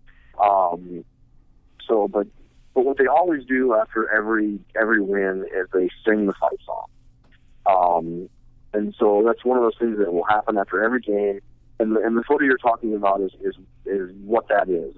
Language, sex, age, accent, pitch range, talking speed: English, male, 50-69, American, 100-125 Hz, 180 wpm